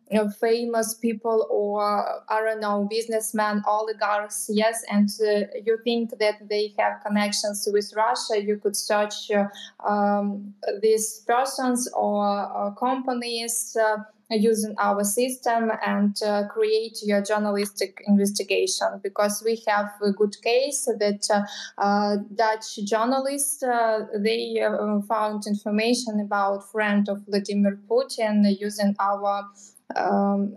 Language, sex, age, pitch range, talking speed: English, female, 20-39, 205-230 Hz, 125 wpm